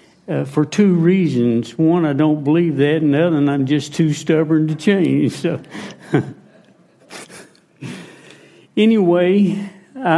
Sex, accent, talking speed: male, American, 125 wpm